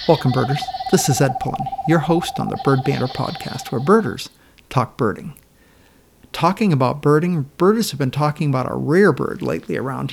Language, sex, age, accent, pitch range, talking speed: English, male, 50-69, American, 135-170 Hz, 180 wpm